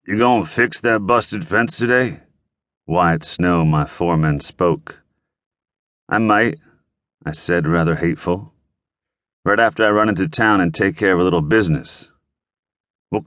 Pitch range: 85-125 Hz